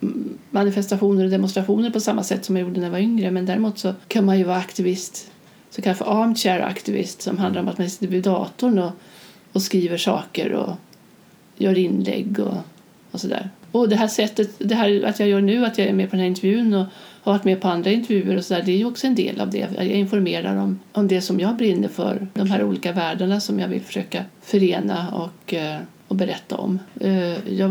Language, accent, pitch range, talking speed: Swedish, native, 185-205 Hz, 215 wpm